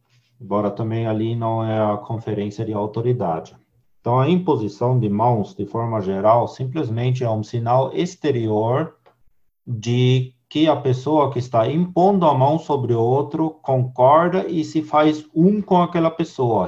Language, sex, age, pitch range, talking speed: Portuguese, male, 50-69, 115-150 Hz, 150 wpm